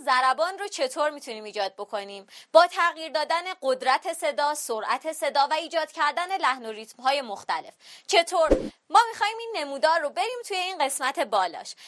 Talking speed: 160 wpm